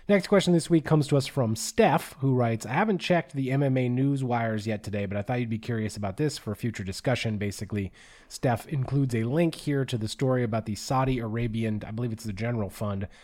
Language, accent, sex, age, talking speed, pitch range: English, American, male, 20-39, 230 wpm, 115-140 Hz